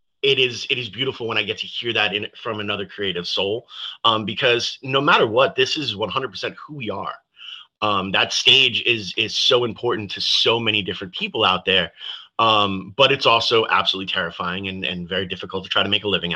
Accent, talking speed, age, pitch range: American, 210 wpm, 30-49, 95-130 Hz